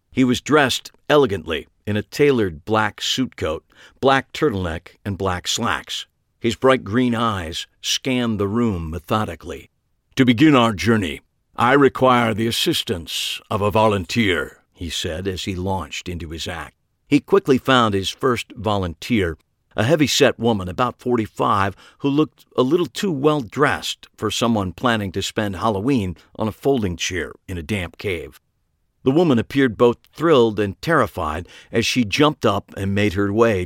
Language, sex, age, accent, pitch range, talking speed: English, male, 50-69, American, 95-130 Hz, 155 wpm